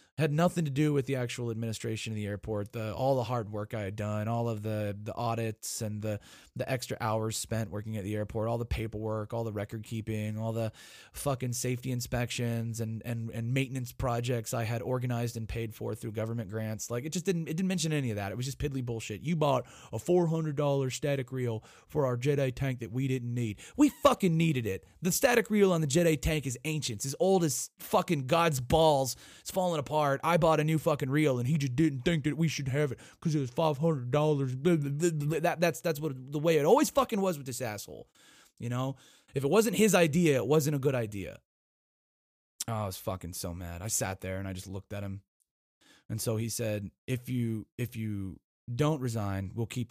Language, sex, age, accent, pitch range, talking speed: English, male, 20-39, American, 110-150 Hz, 225 wpm